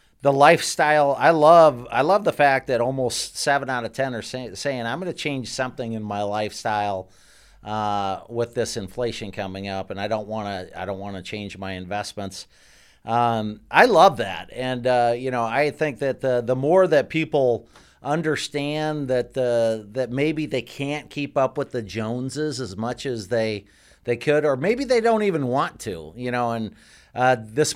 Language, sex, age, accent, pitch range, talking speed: English, male, 40-59, American, 115-145 Hz, 190 wpm